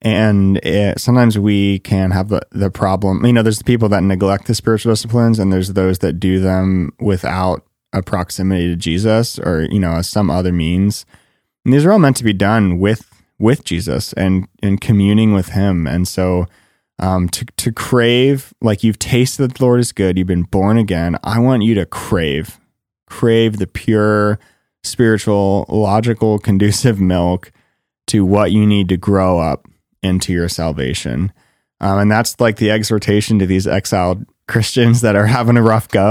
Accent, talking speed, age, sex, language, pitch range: American, 180 wpm, 20-39, male, English, 90-110 Hz